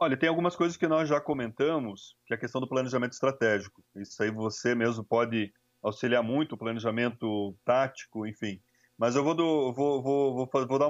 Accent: Brazilian